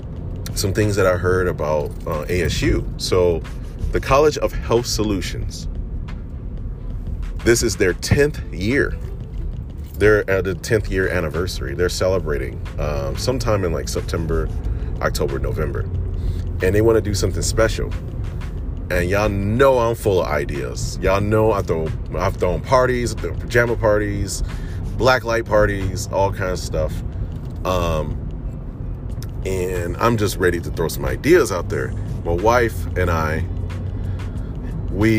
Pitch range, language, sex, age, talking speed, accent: 85-105 Hz, English, male, 30-49, 135 wpm, American